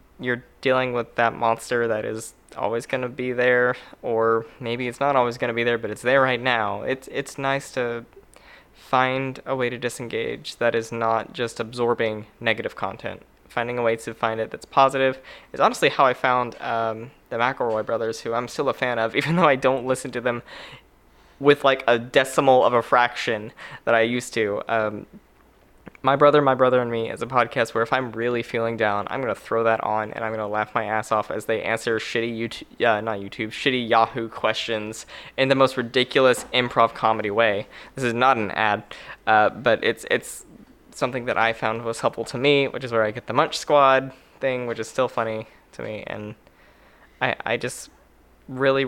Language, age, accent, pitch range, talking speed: English, 10-29, American, 115-130 Hz, 205 wpm